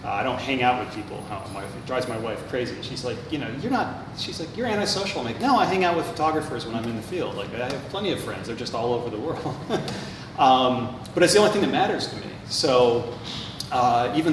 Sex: male